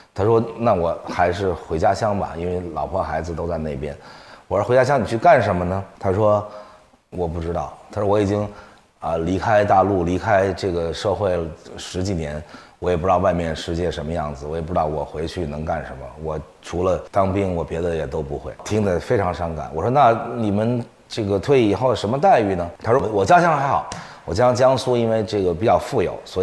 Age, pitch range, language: 30-49, 85-115 Hz, Chinese